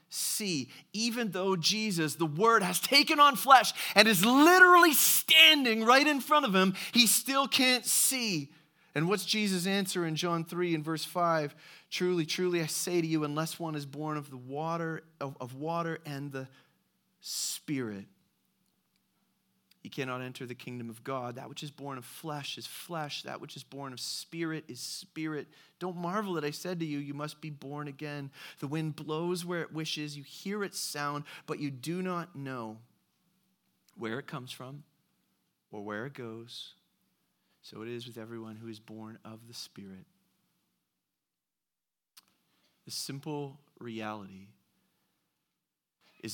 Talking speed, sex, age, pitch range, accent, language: 160 wpm, male, 30-49, 125-180 Hz, American, English